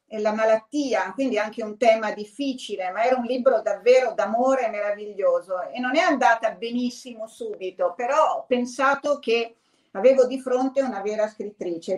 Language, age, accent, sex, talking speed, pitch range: Italian, 50-69, native, female, 155 wpm, 205-265 Hz